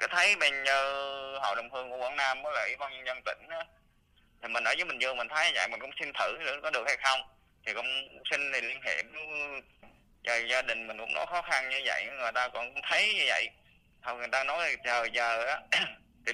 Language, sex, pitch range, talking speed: Vietnamese, male, 115-140 Hz, 240 wpm